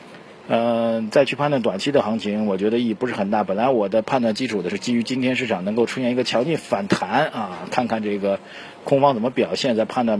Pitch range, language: 110-135 Hz, Chinese